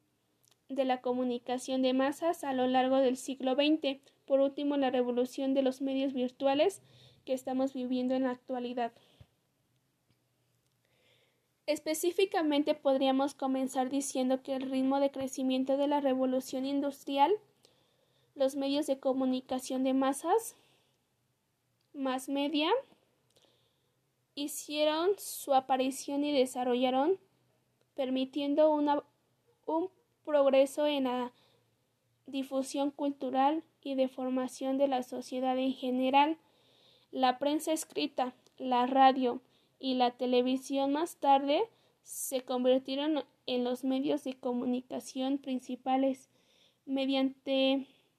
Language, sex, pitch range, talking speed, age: Spanish, female, 260-285 Hz, 105 wpm, 20-39